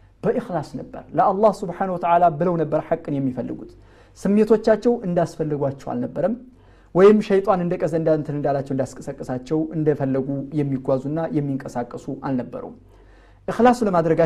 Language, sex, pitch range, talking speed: Amharic, male, 140-205 Hz, 110 wpm